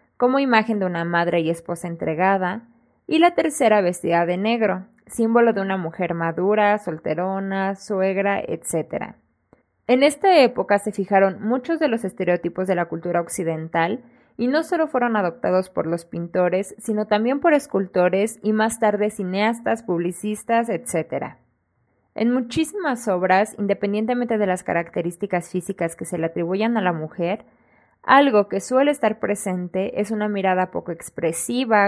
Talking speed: 145 wpm